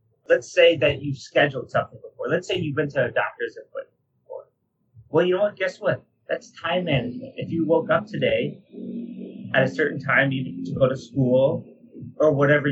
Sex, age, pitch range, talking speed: male, 30-49, 135-190 Hz, 200 wpm